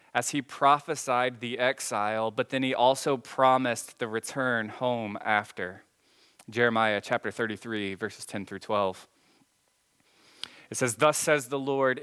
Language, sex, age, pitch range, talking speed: English, male, 20-39, 120-145 Hz, 135 wpm